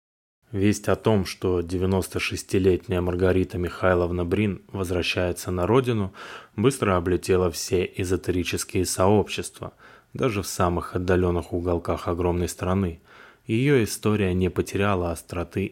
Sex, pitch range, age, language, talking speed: male, 85-100 Hz, 20-39, Russian, 105 wpm